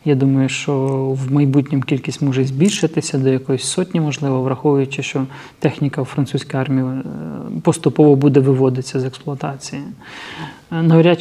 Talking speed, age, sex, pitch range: 130 wpm, 30-49, male, 135-155 Hz